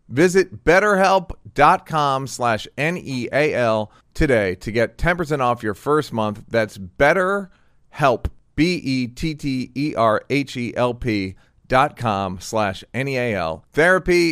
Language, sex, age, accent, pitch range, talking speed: English, male, 40-59, American, 110-165 Hz, 75 wpm